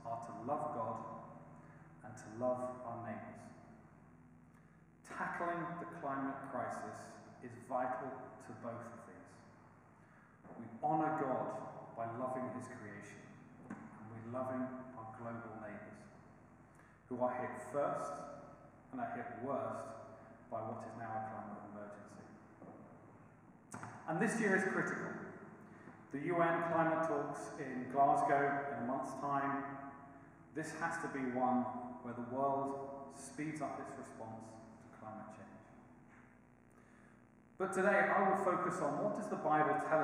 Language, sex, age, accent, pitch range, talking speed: English, male, 40-59, British, 115-150 Hz, 130 wpm